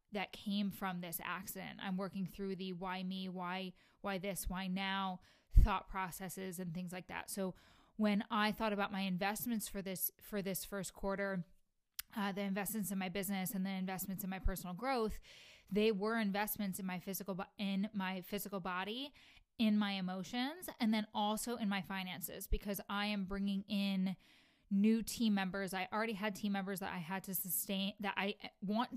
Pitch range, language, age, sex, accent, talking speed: 190-215 Hz, English, 10-29, female, American, 180 wpm